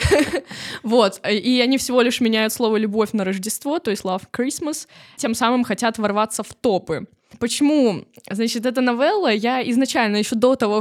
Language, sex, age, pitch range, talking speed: Russian, female, 20-39, 200-245 Hz, 160 wpm